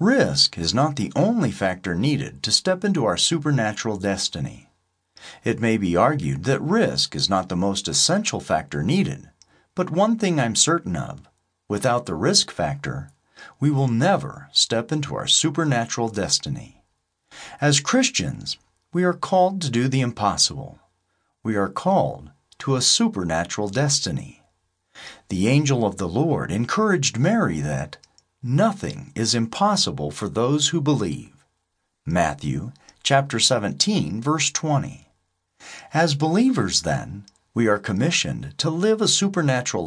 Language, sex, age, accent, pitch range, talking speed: English, male, 40-59, American, 100-160 Hz, 135 wpm